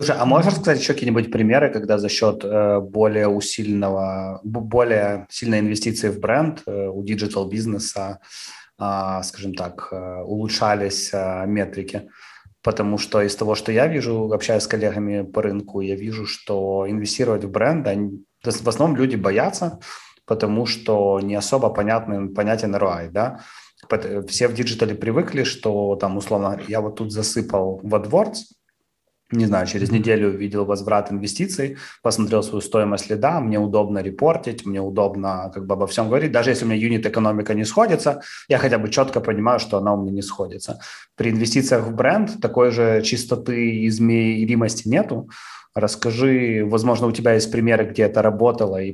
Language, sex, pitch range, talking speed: Russian, male, 100-115 Hz, 155 wpm